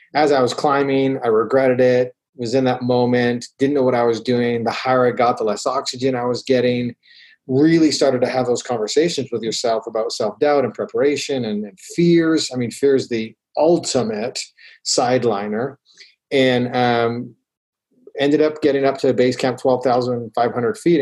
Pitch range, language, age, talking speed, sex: 115-135 Hz, English, 30-49, 170 wpm, male